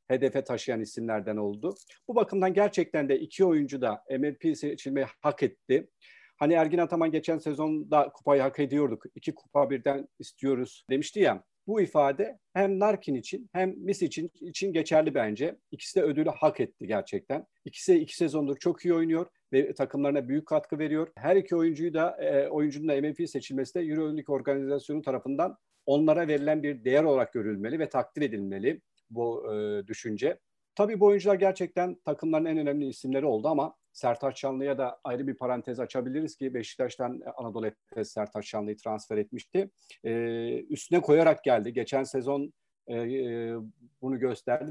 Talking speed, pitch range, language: 155 wpm, 130-160 Hz, Turkish